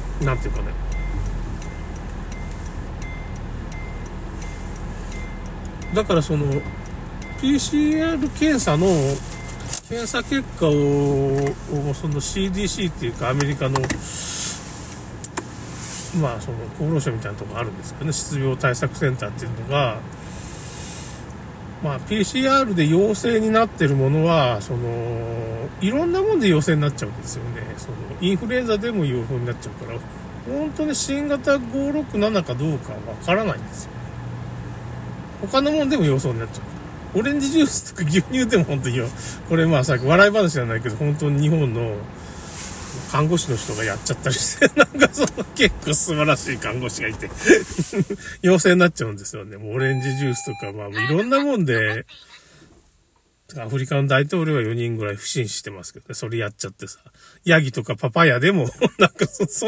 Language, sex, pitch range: Japanese, male, 120-195 Hz